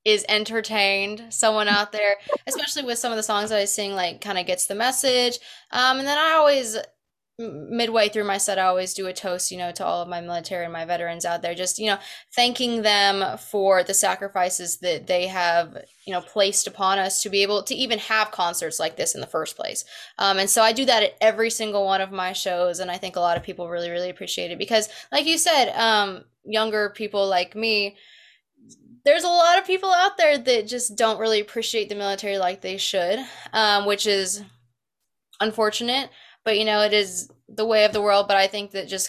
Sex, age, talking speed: female, 20-39, 220 wpm